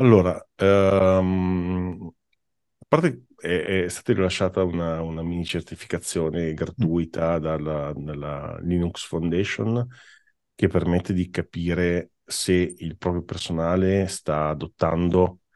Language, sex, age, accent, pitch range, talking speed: Italian, male, 40-59, native, 80-95 Hz, 95 wpm